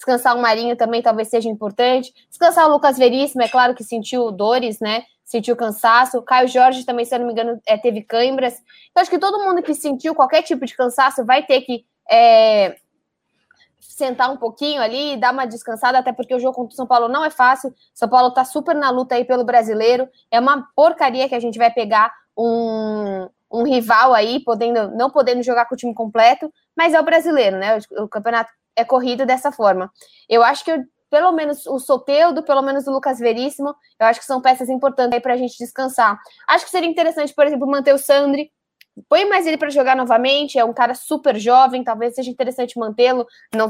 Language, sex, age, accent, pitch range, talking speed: Portuguese, female, 10-29, Brazilian, 235-280 Hz, 210 wpm